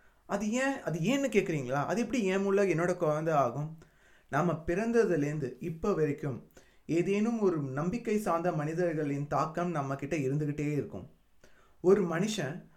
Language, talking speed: Tamil, 125 wpm